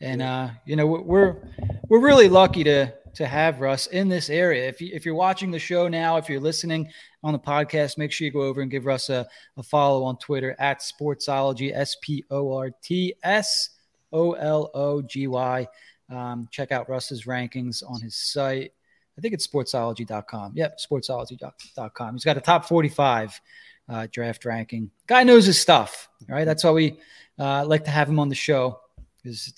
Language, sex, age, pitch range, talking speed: English, male, 20-39, 130-175 Hz, 170 wpm